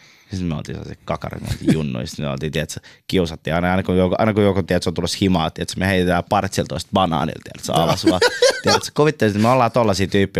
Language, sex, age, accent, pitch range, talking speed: Finnish, male, 20-39, native, 90-125 Hz, 185 wpm